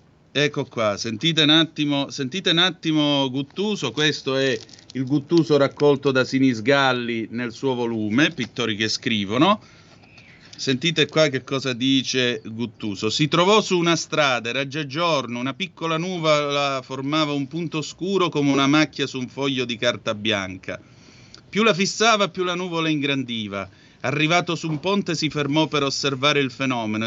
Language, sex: Italian, male